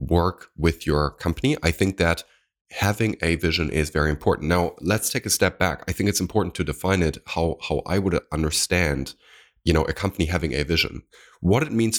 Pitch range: 80-100 Hz